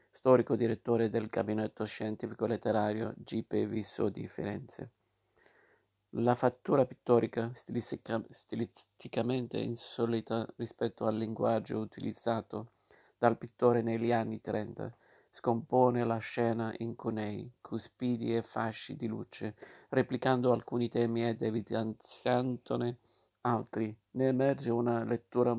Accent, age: native, 50-69